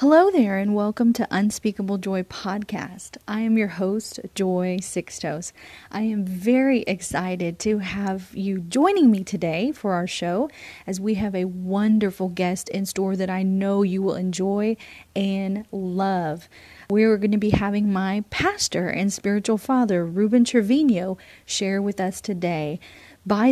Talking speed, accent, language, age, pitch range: 155 wpm, American, English, 30-49, 185-225 Hz